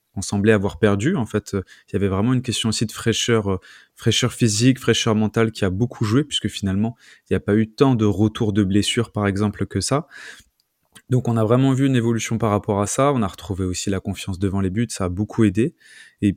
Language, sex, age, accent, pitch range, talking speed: French, male, 20-39, French, 95-115 Hz, 240 wpm